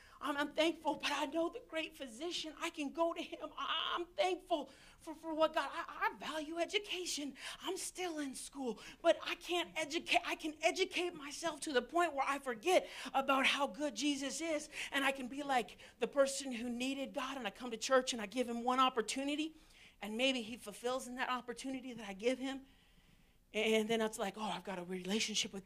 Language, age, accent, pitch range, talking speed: English, 50-69, American, 235-310 Hz, 205 wpm